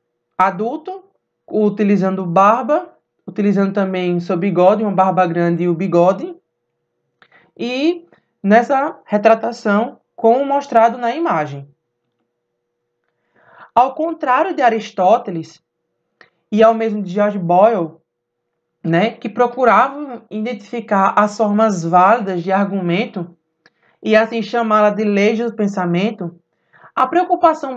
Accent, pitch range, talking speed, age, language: Brazilian, 175-240 Hz, 105 wpm, 20-39, Portuguese